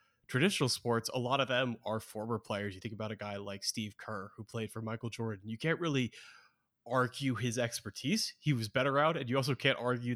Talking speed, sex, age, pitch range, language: 220 wpm, male, 20-39, 110-130 Hz, English